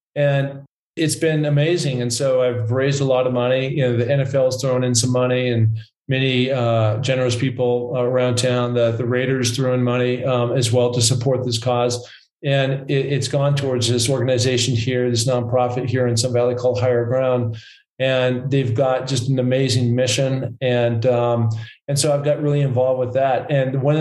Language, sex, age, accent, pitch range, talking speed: English, male, 40-59, American, 125-135 Hz, 190 wpm